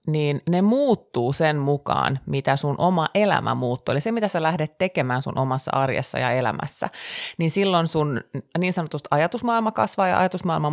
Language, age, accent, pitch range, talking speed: Finnish, 30-49, native, 135-170 Hz, 170 wpm